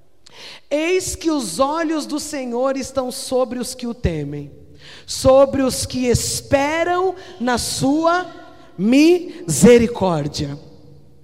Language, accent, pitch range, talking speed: Portuguese, Brazilian, 210-300 Hz, 100 wpm